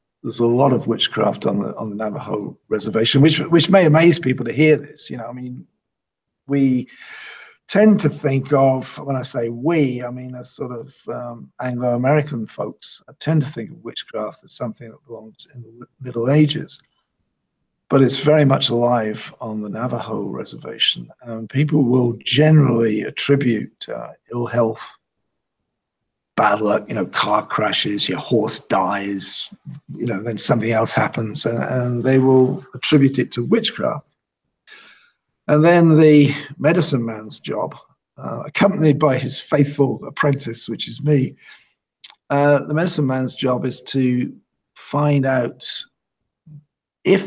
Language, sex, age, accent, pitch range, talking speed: English, male, 50-69, British, 120-150 Hz, 150 wpm